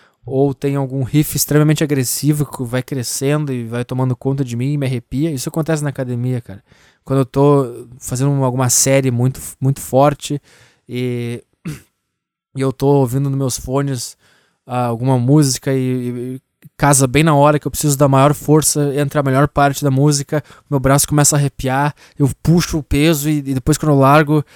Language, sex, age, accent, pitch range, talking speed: Portuguese, male, 20-39, Brazilian, 130-160 Hz, 185 wpm